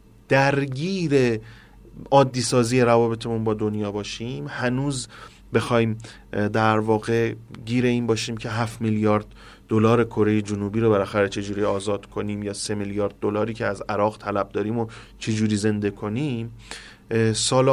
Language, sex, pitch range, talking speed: Persian, male, 105-125 Hz, 130 wpm